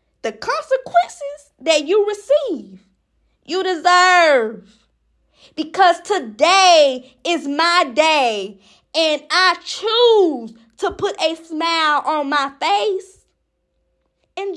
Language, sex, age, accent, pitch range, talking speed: English, female, 10-29, American, 290-375 Hz, 95 wpm